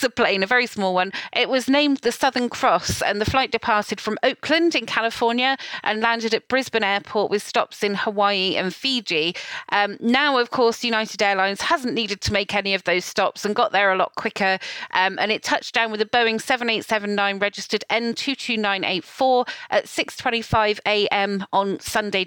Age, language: 30-49, English